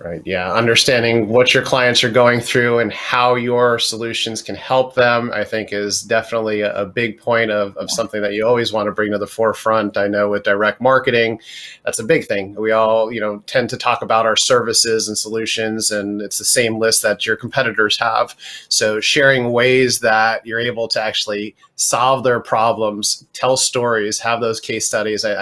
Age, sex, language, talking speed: 30-49, male, English, 195 wpm